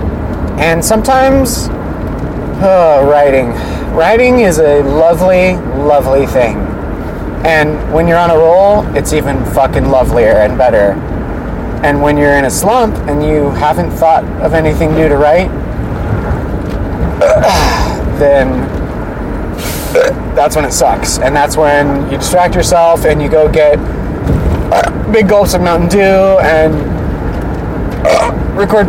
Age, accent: 30-49, American